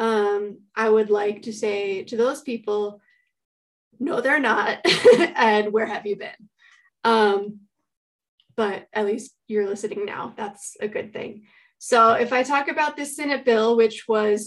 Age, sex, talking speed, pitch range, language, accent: 20-39, female, 160 wpm, 210-235 Hz, English, American